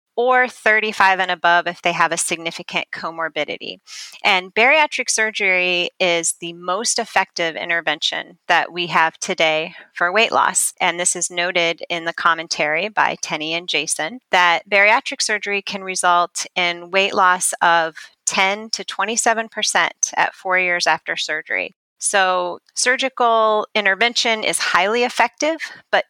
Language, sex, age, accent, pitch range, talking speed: English, female, 30-49, American, 175-225 Hz, 140 wpm